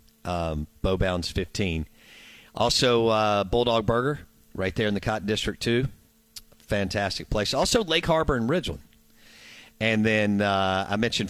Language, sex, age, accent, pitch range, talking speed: English, male, 50-69, American, 90-110 Hz, 140 wpm